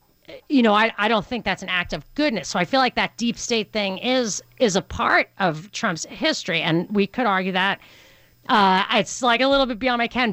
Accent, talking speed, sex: American, 230 wpm, female